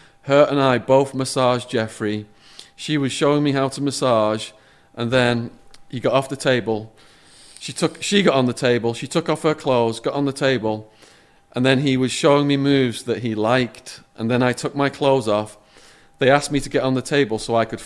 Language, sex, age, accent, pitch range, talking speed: English, male, 40-59, British, 110-140 Hz, 215 wpm